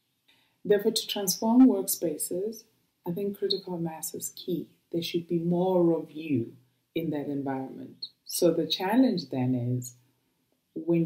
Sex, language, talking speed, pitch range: female, English, 135 wpm, 145-185 Hz